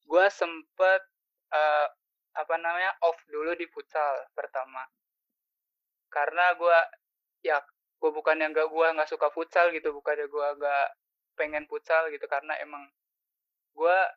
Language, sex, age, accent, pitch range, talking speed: Indonesian, male, 20-39, native, 155-255 Hz, 130 wpm